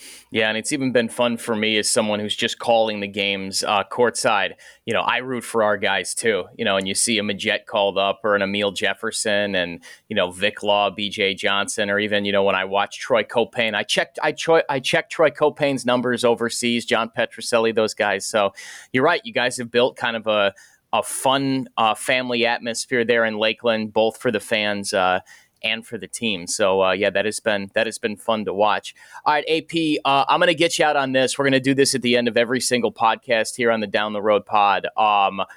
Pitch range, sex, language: 105-130 Hz, male, English